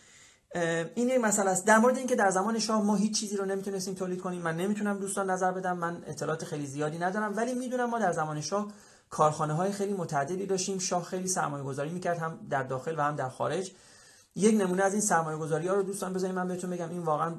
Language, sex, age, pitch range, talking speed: Persian, male, 30-49, 150-195 Hz, 225 wpm